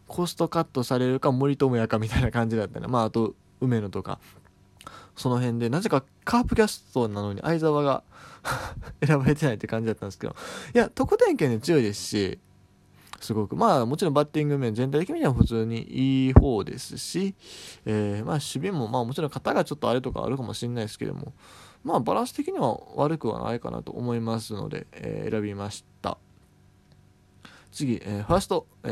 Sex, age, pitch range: male, 20-39, 110-155 Hz